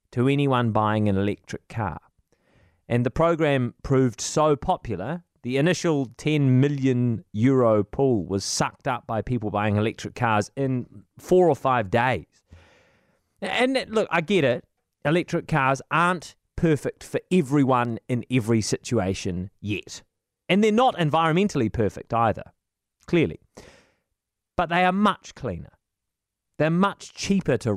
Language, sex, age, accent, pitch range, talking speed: English, male, 30-49, British, 115-175 Hz, 135 wpm